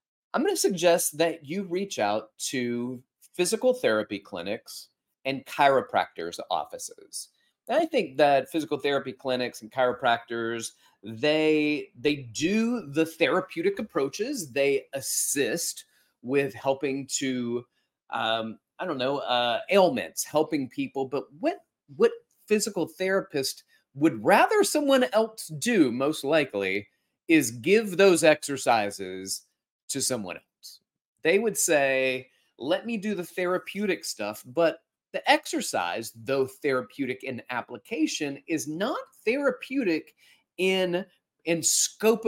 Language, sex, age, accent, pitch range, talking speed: English, male, 30-49, American, 125-195 Hz, 120 wpm